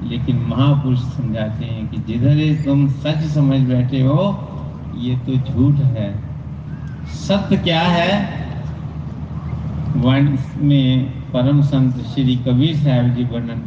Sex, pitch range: male, 130-155 Hz